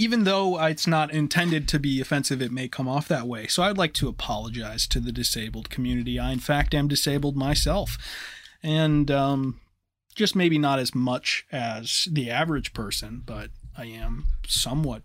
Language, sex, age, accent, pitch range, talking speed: English, male, 20-39, American, 120-155 Hz, 175 wpm